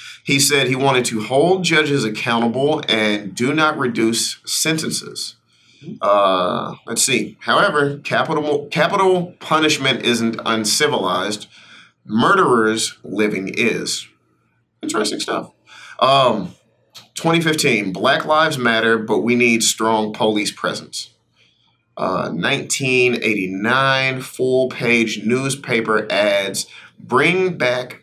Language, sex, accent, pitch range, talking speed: English, male, American, 110-145 Hz, 100 wpm